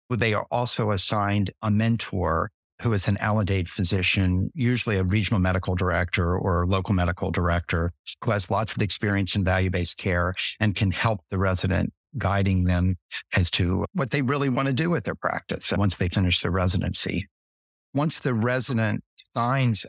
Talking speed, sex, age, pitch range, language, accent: 170 wpm, male, 50-69, 95-110 Hz, English, American